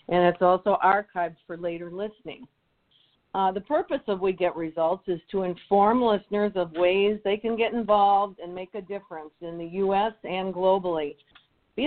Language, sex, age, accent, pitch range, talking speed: English, female, 50-69, American, 175-210 Hz, 170 wpm